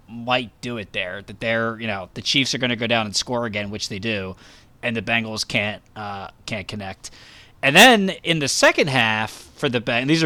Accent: American